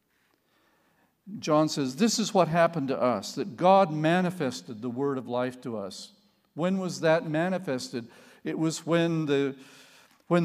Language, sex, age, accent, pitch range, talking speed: English, male, 50-69, American, 125-180 Hz, 150 wpm